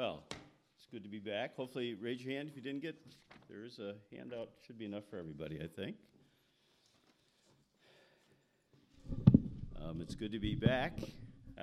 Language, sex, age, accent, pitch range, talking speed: English, male, 50-69, American, 95-120 Hz, 165 wpm